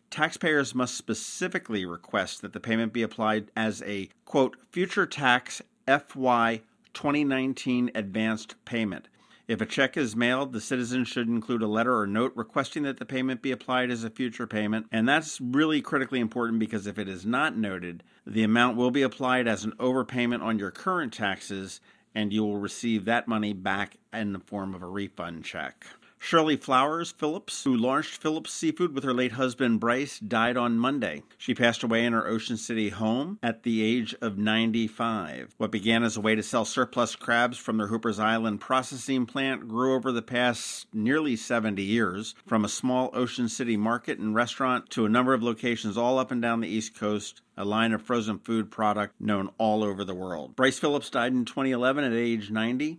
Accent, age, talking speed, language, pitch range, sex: American, 50-69, 190 wpm, English, 110-130 Hz, male